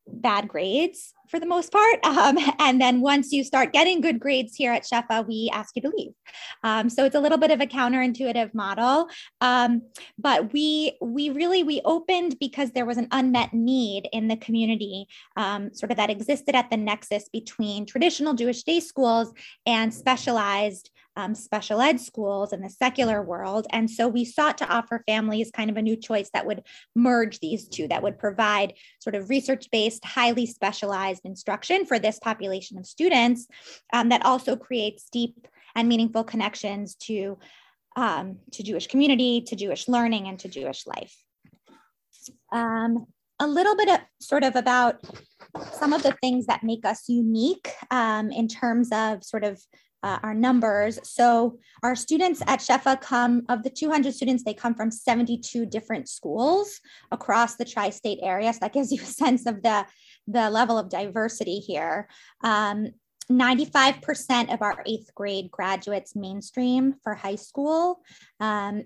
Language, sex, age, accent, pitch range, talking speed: English, female, 20-39, American, 215-265 Hz, 165 wpm